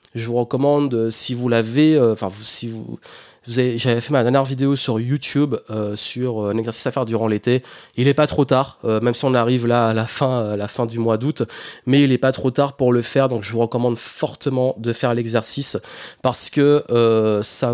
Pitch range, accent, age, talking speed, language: 115-145 Hz, French, 20-39, 235 wpm, French